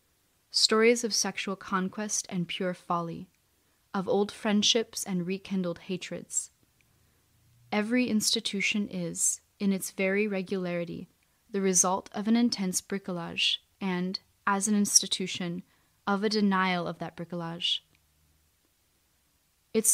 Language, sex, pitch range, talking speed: English, female, 175-200 Hz, 110 wpm